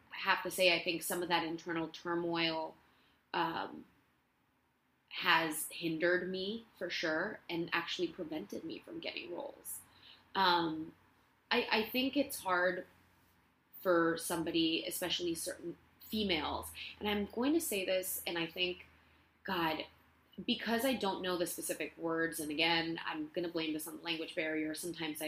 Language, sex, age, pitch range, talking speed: English, female, 20-39, 165-205 Hz, 150 wpm